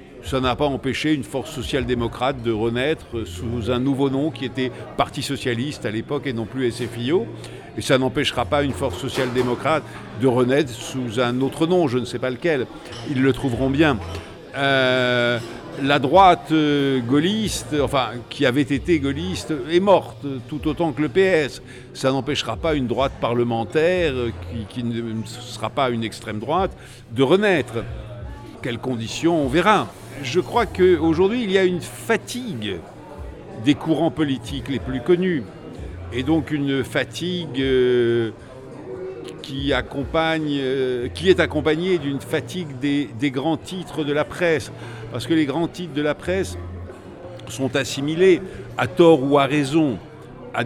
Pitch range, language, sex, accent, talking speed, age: 120-155 Hz, French, male, French, 150 wpm, 60-79